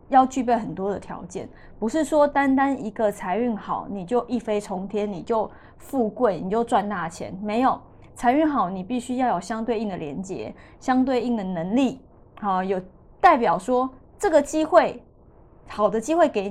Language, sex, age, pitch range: Chinese, female, 20-39, 205-260 Hz